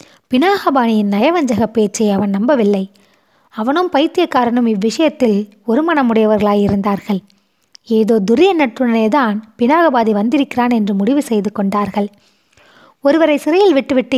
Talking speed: 90 wpm